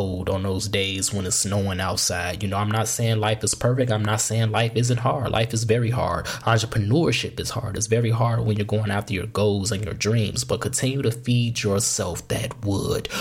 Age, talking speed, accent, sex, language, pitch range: 20-39, 215 wpm, American, male, English, 105-125 Hz